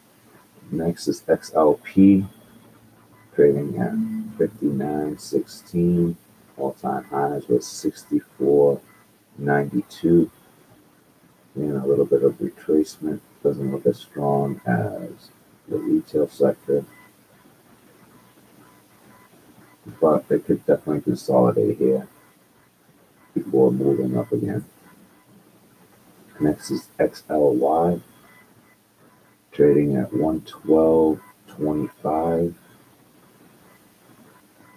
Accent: American